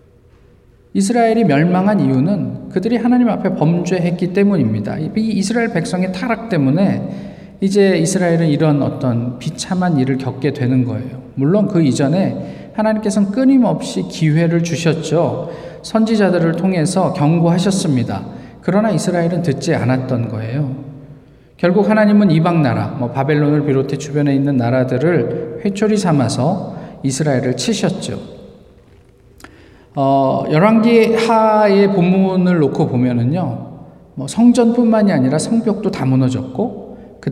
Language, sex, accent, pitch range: Korean, male, native, 135-195 Hz